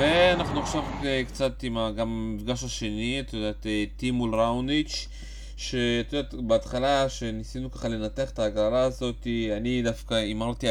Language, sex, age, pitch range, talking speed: Hebrew, male, 30-49, 110-130 Hz, 135 wpm